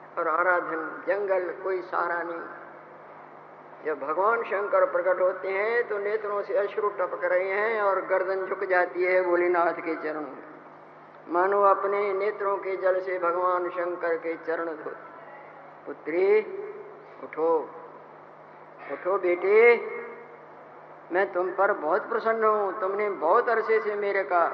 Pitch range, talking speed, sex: 175-220 Hz, 135 wpm, female